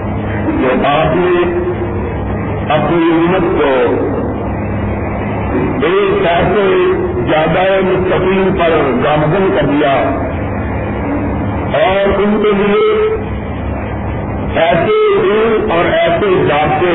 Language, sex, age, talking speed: Urdu, female, 50-69, 80 wpm